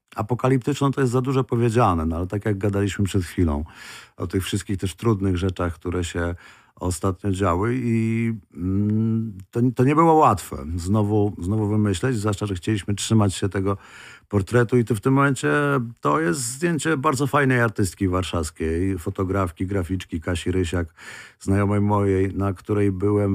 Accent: native